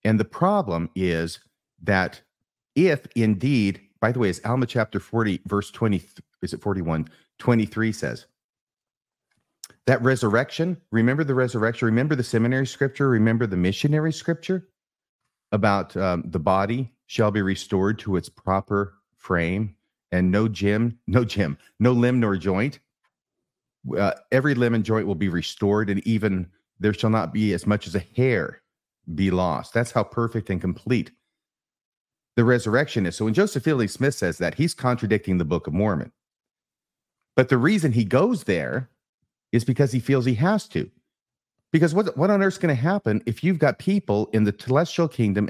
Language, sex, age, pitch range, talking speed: English, male, 40-59, 105-140 Hz, 165 wpm